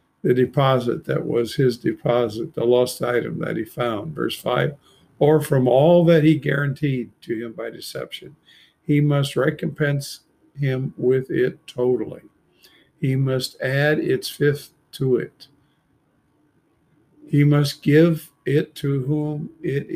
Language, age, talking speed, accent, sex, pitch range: English, 50-69, 135 wpm, American, male, 125-150 Hz